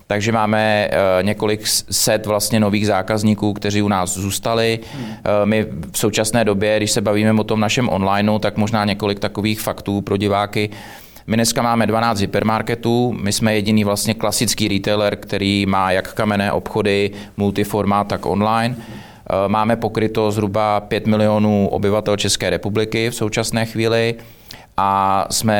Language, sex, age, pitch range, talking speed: Czech, male, 30-49, 100-110 Hz, 145 wpm